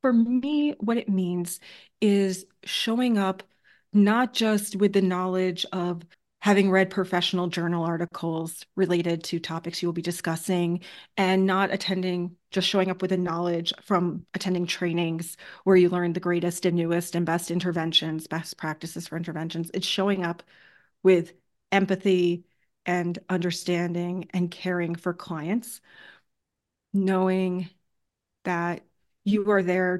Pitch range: 175-195 Hz